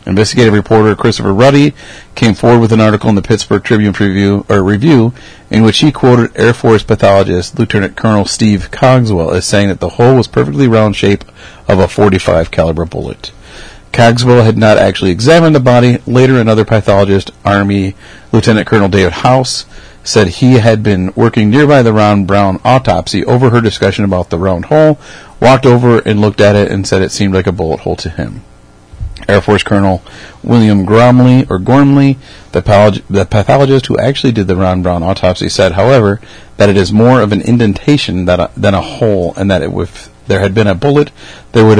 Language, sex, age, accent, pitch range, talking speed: English, male, 40-59, American, 95-120 Hz, 185 wpm